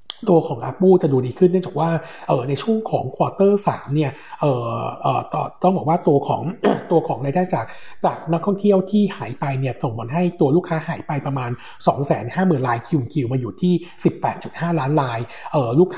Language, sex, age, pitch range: Thai, male, 60-79, 135-170 Hz